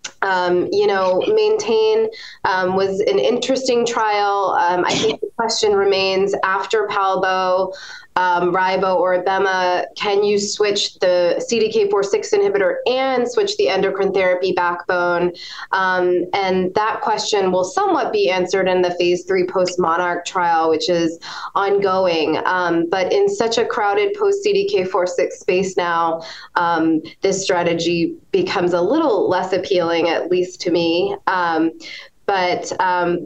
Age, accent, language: 20-39, American, English